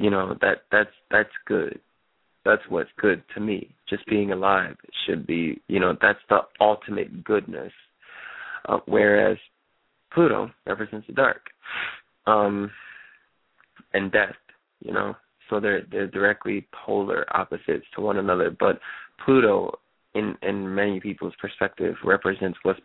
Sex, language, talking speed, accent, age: male, English, 135 wpm, American, 20-39